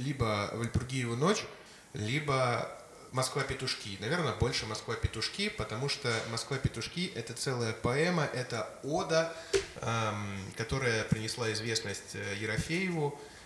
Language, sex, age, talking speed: Russian, male, 20-39, 90 wpm